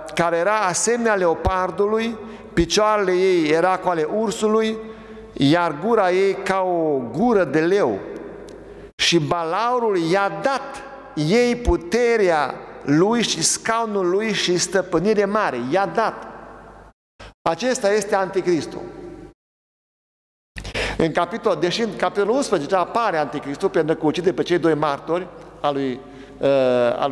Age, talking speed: 60-79, 115 wpm